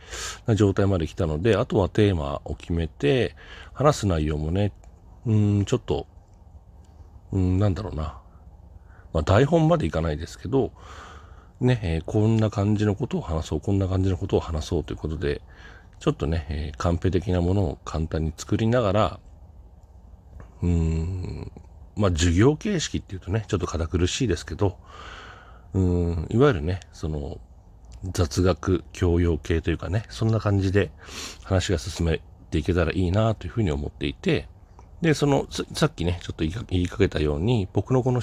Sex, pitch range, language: male, 80-105 Hz, Japanese